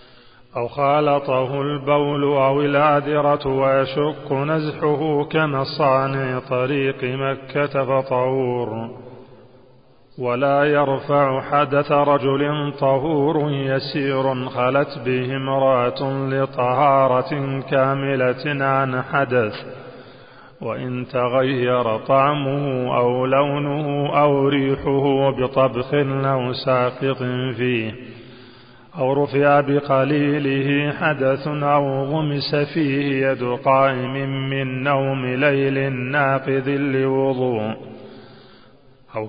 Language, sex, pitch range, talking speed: Arabic, male, 125-140 Hz, 75 wpm